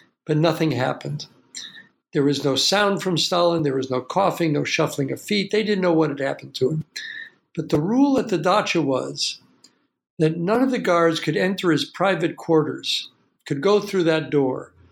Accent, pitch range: American, 150-195 Hz